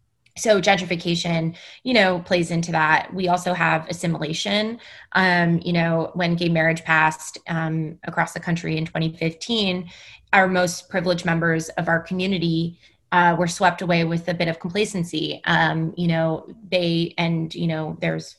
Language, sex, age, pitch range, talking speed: English, female, 20-39, 165-180 Hz, 155 wpm